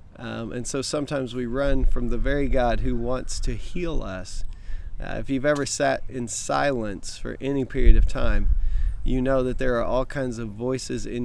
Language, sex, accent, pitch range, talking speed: English, male, American, 110-135 Hz, 195 wpm